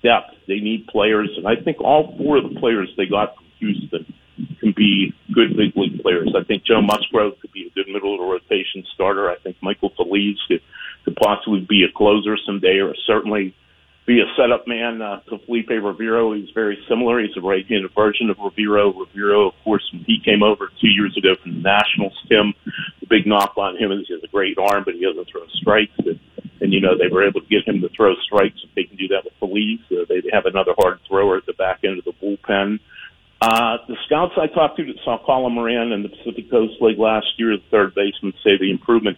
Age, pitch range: 50-69, 100-120 Hz